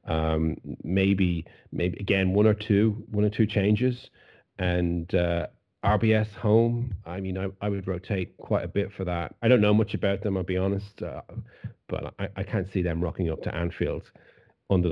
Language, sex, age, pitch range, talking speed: English, male, 30-49, 90-110 Hz, 190 wpm